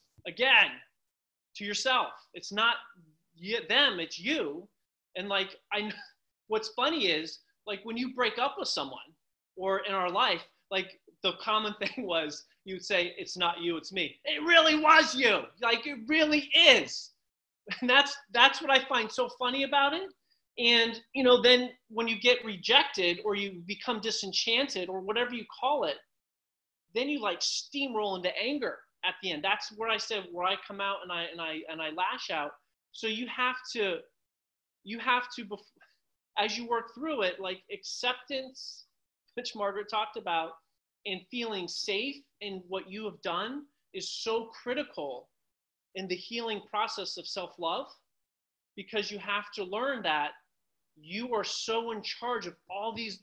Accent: American